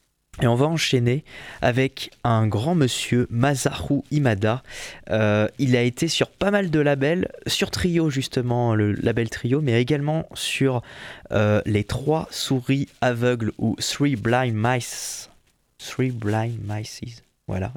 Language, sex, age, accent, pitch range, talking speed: French, male, 20-39, French, 105-130 Hz, 140 wpm